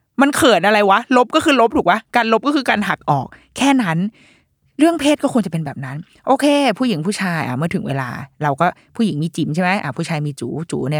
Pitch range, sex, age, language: 155-220 Hz, female, 20-39, Thai